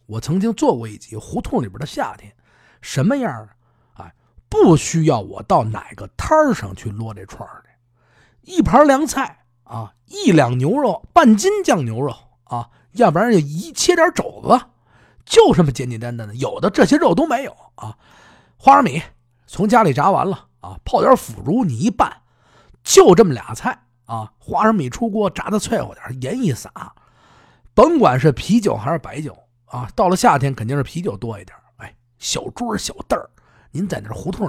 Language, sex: Chinese, male